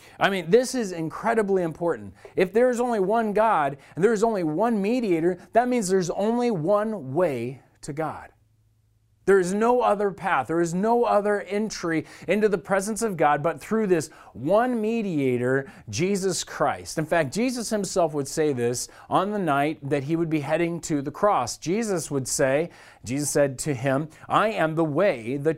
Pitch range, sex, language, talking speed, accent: 140-205 Hz, male, English, 185 wpm, American